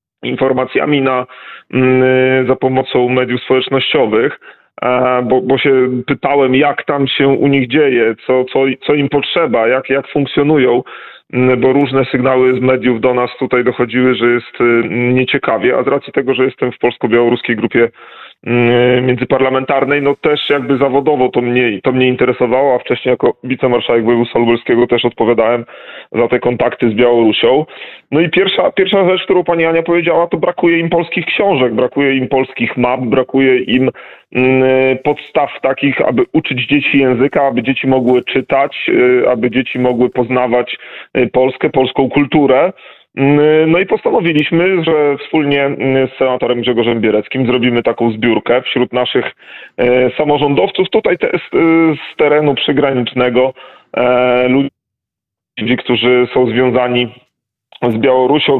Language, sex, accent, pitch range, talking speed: Polish, male, native, 125-140 Hz, 135 wpm